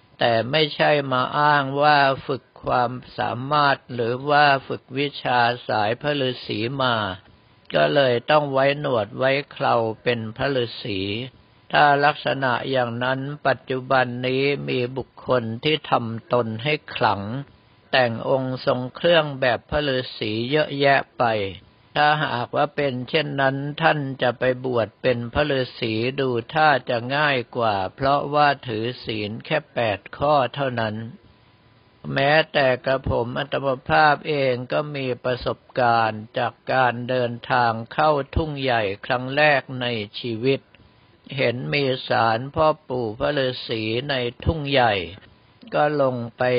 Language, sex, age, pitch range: Thai, male, 60-79, 115-140 Hz